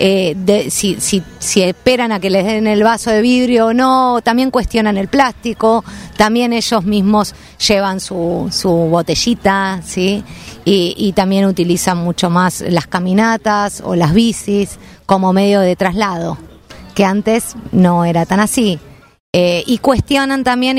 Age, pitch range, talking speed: 20-39, 185-225 Hz, 155 wpm